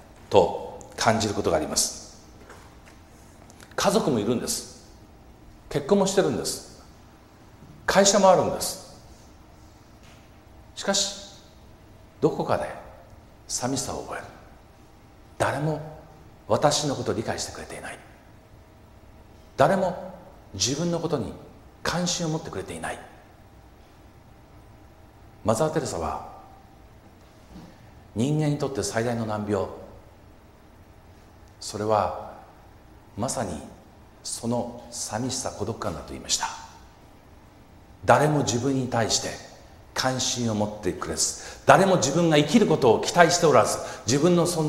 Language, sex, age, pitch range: Japanese, male, 50-69, 105-135 Hz